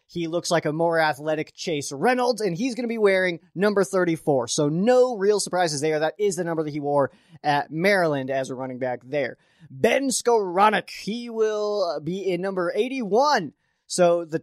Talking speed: 185 wpm